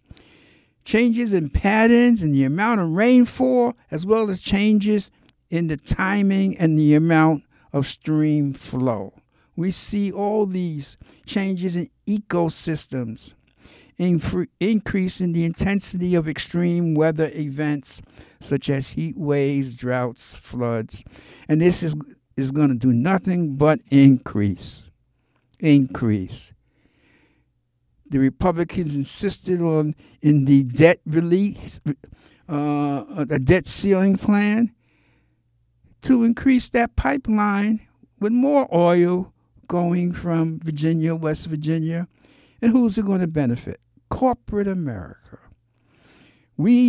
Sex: male